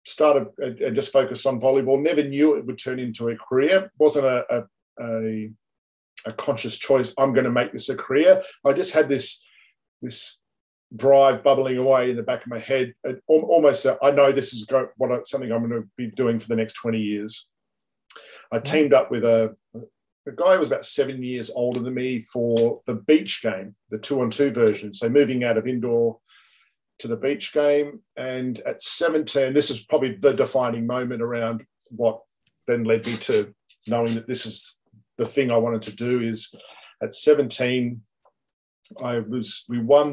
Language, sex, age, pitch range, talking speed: English, male, 50-69, 115-135 Hz, 180 wpm